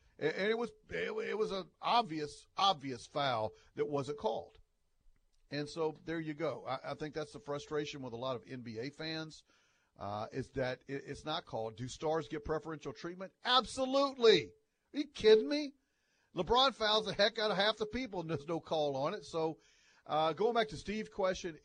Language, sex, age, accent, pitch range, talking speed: English, male, 50-69, American, 130-195 Hz, 190 wpm